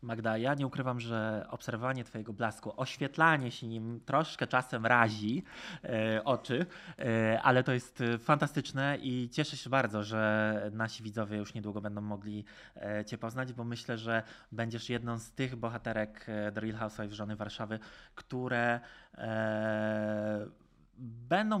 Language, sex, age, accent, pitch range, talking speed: Polish, male, 20-39, native, 110-130 Hz, 145 wpm